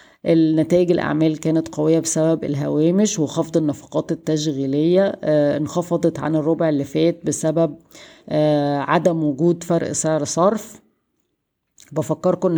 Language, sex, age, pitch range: Arabic, female, 20-39, 150-170 Hz